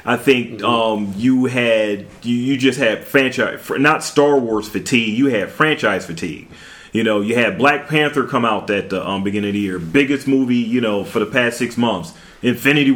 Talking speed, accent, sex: 195 wpm, American, male